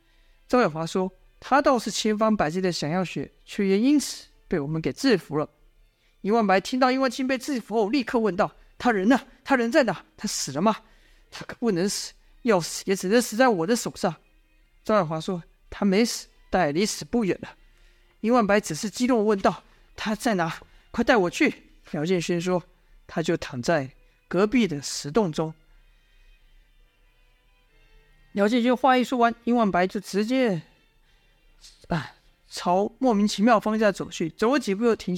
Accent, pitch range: native, 165-225 Hz